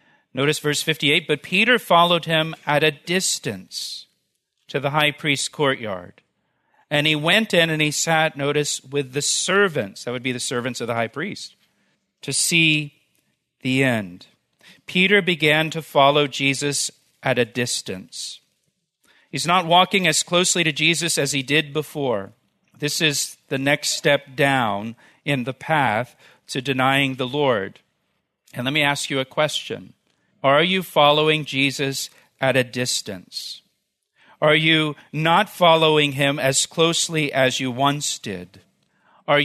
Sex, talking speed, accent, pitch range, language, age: male, 150 wpm, American, 135-160 Hz, English, 50-69